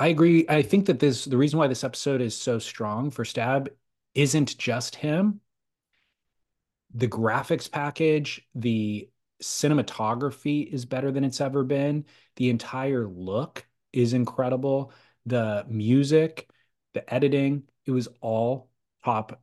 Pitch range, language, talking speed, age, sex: 110-135 Hz, English, 135 wpm, 30-49, male